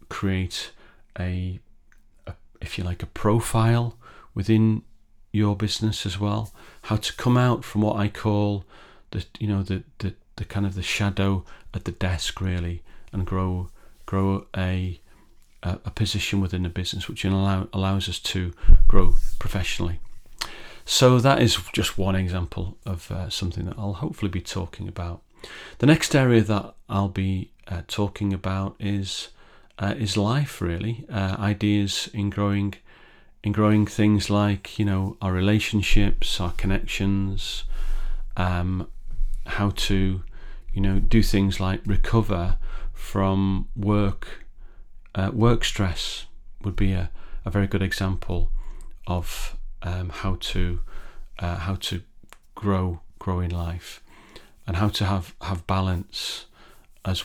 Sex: male